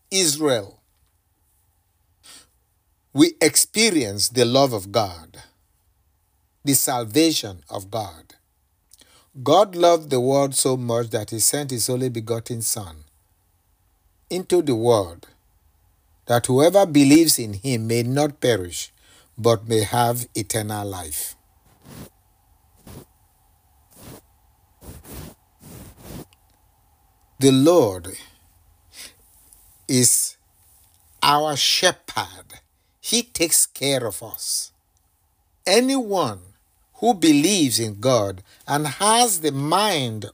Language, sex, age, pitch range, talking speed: English, male, 60-79, 90-145 Hz, 90 wpm